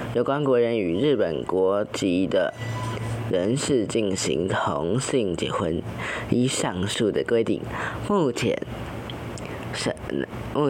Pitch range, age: 110-135 Hz, 20-39